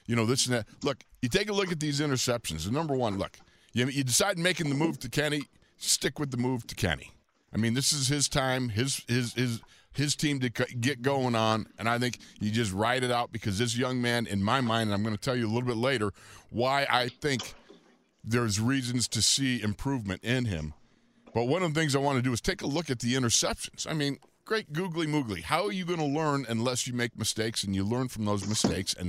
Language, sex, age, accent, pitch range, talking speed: English, male, 50-69, American, 115-150 Hz, 240 wpm